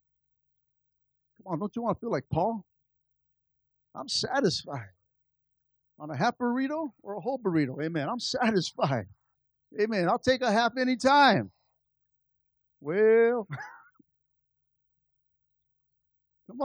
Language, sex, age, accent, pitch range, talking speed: English, male, 50-69, American, 155-225 Hz, 110 wpm